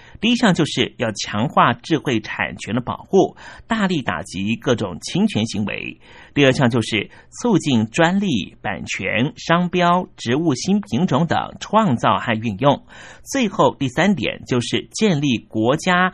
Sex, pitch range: male, 115-180 Hz